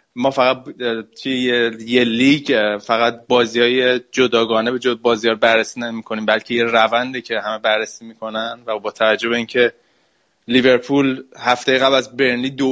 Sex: male